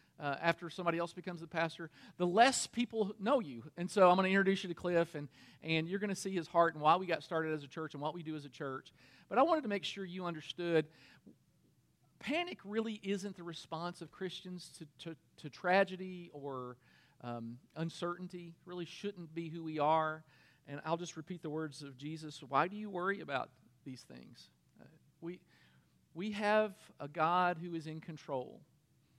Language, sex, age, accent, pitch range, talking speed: English, male, 50-69, American, 150-190 Hz, 200 wpm